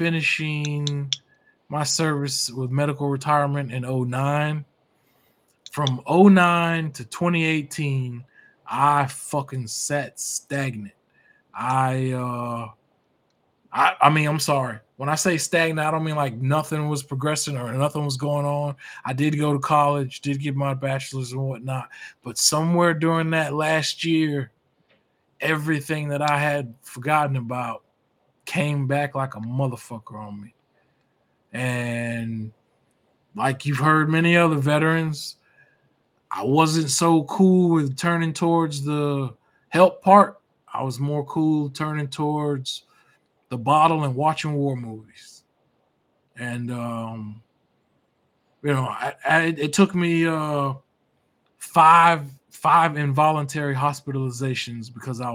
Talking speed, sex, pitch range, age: 125 wpm, male, 130-155 Hz, 20-39